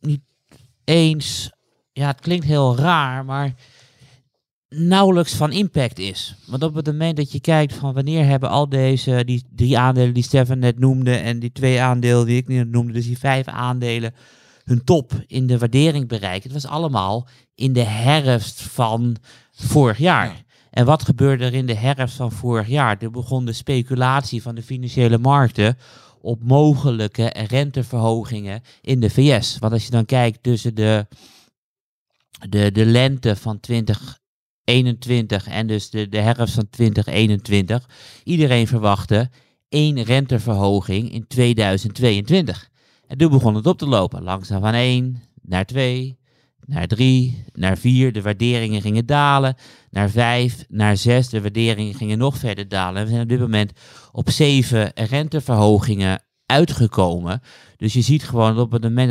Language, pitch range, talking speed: Dutch, 110-130 Hz, 155 wpm